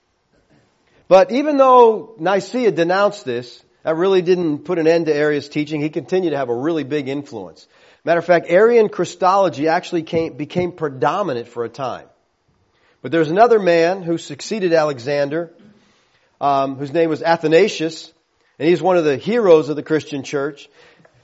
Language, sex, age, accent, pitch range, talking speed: English, male, 40-59, American, 145-190 Hz, 160 wpm